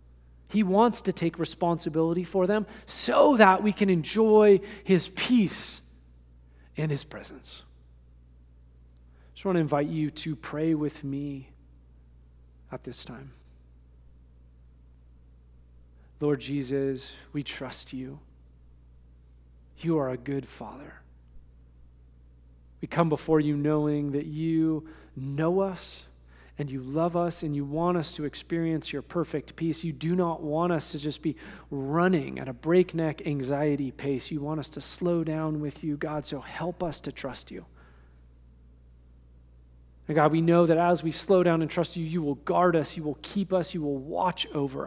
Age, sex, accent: 40-59, male, American